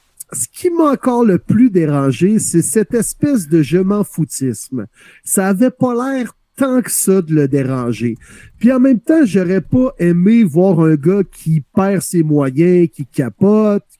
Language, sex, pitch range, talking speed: French, male, 155-215 Hz, 170 wpm